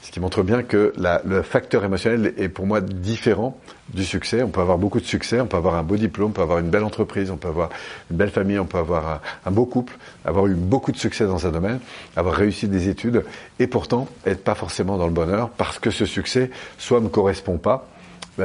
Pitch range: 90-110 Hz